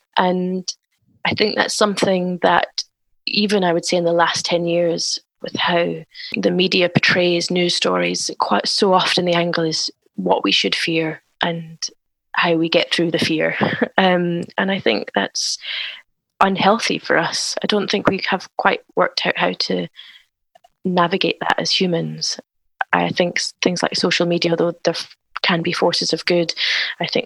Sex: female